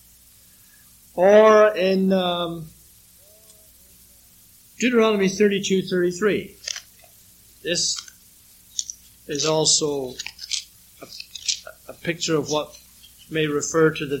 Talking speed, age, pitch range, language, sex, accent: 85 wpm, 60-79, 140-200 Hz, English, male, American